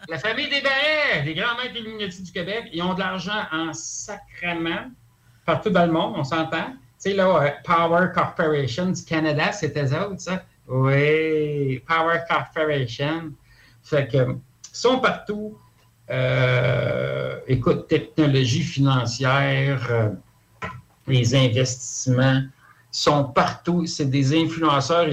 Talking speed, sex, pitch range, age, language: 120 wpm, male, 130-170 Hz, 60-79, French